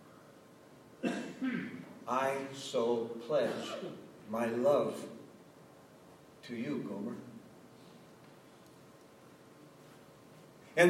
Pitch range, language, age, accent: 150-195 Hz, English, 60-79, American